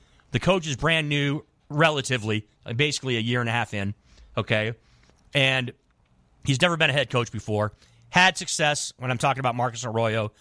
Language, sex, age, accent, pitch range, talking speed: English, male, 30-49, American, 115-150 Hz, 175 wpm